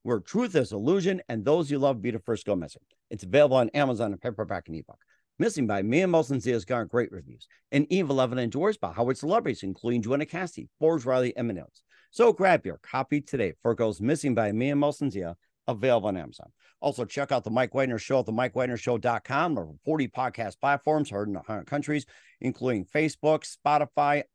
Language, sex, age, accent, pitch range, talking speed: English, male, 50-69, American, 125-150 Hz, 205 wpm